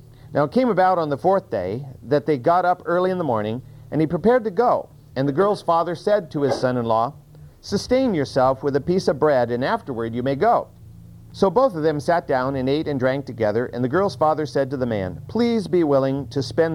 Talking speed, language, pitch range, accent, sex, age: 235 wpm, English, 120-165 Hz, American, male, 50-69